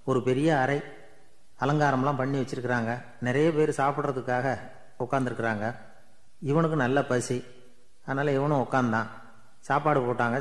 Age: 30-49